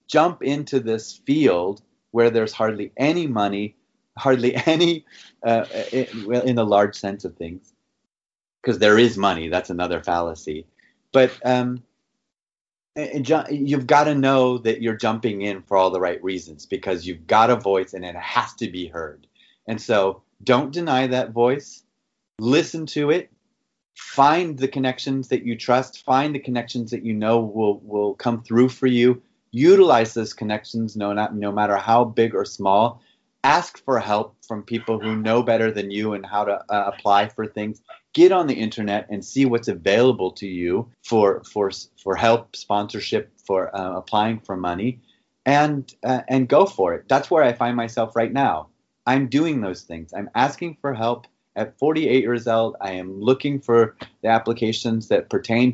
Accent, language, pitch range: American, English, 105-130 Hz